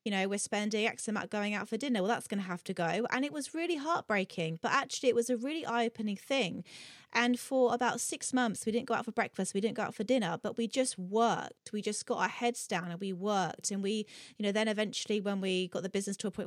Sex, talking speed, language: female, 275 wpm, English